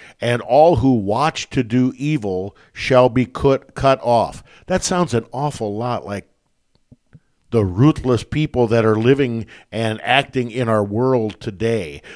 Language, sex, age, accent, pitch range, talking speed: English, male, 50-69, American, 110-140 Hz, 150 wpm